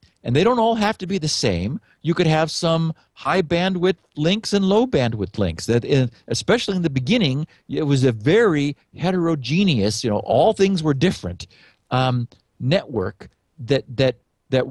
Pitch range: 125-180 Hz